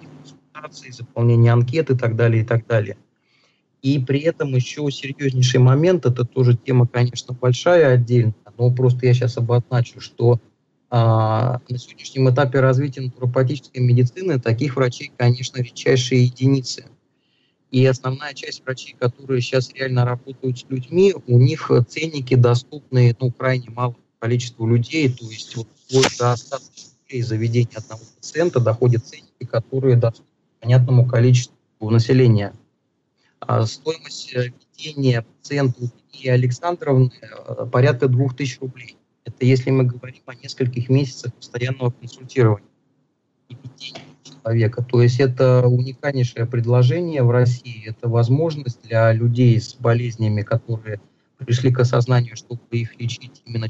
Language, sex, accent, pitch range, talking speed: Russian, male, native, 120-135 Hz, 125 wpm